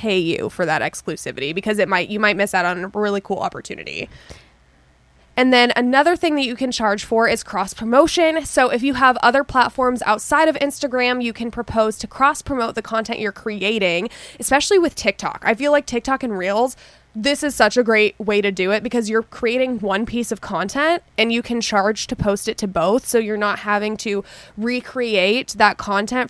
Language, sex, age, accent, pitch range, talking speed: English, female, 20-39, American, 205-255 Hz, 200 wpm